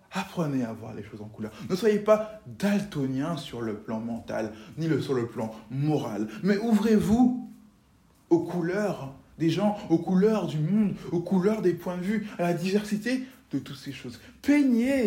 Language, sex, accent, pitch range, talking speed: French, male, French, 150-225 Hz, 175 wpm